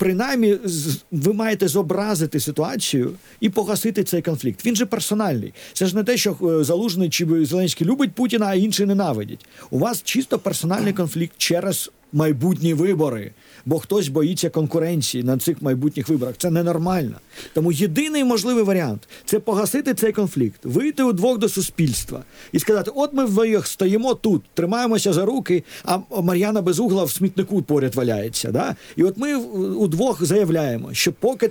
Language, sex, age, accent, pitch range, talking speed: Ukrainian, male, 50-69, native, 160-210 Hz, 150 wpm